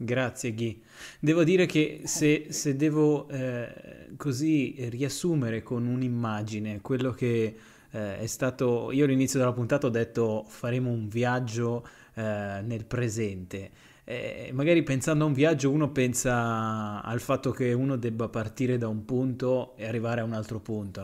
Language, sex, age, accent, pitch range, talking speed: Italian, male, 20-39, native, 115-145 Hz, 150 wpm